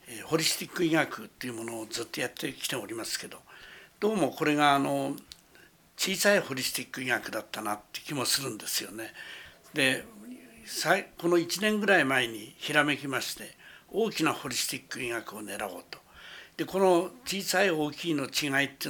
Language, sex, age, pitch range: Japanese, male, 60-79, 140-180 Hz